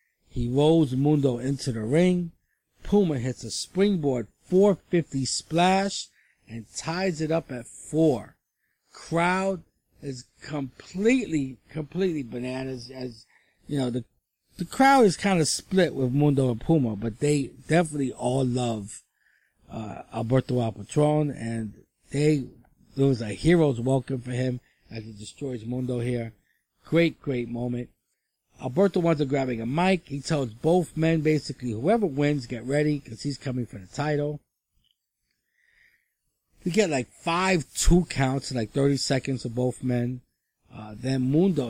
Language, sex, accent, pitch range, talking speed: English, male, American, 125-165 Hz, 140 wpm